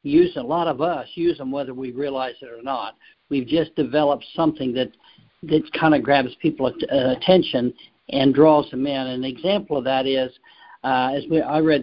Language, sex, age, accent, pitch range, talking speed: English, male, 60-79, American, 135-160 Hz, 200 wpm